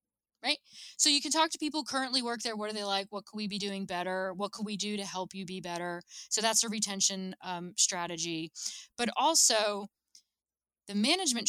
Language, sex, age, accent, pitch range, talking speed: English, female, 20-39, American, 180-220 Hz, 200 wpm